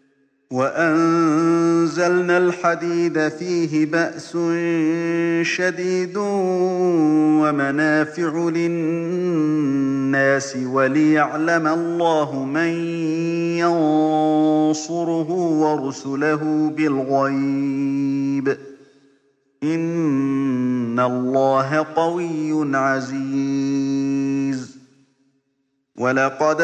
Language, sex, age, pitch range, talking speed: Arabic, male, 50-69, 135-165 Hz, 40 wpm